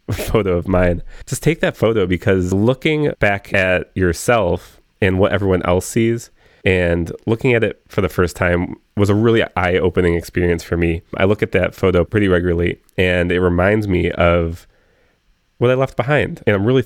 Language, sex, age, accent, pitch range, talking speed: English, male, 30-49, American, 90-115 Hz, 180 wpm